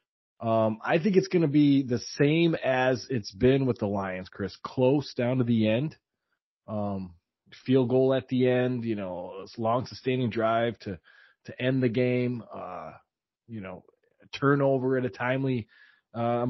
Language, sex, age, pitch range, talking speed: English, male, 30-49, 105-130 Hz, 165 wpm